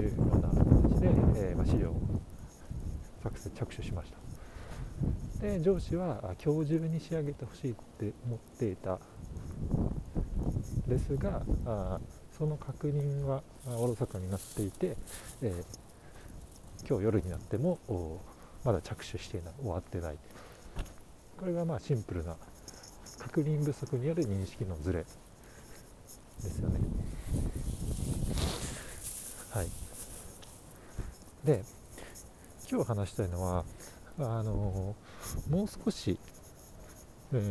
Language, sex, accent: Japanese, male, native